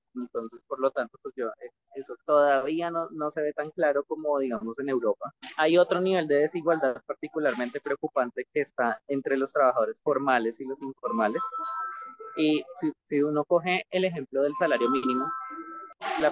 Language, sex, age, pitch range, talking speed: Spanish, male, 20-39, 130-175 Hz, 165 wpm